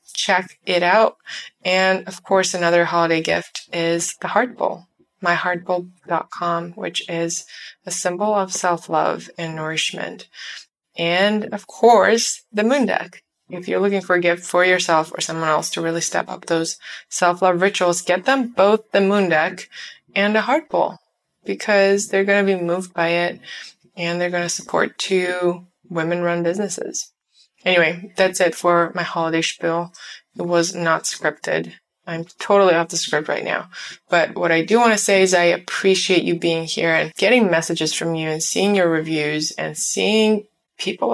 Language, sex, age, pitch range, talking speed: English, female, 20-39, 170-200 Hz, 170 wpm